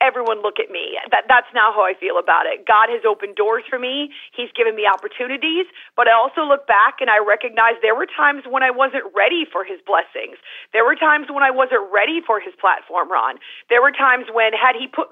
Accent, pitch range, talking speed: American, 225-335 Hz, 230 wpm